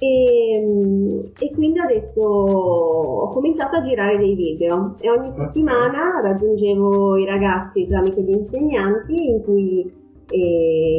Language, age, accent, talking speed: Italian, 30-49, native, 130 wpm